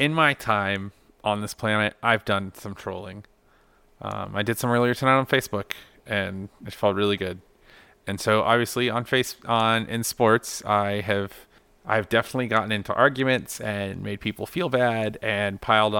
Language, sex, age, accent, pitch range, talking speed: English, male, 30-49, American, 100-120 Hz, 170 wpm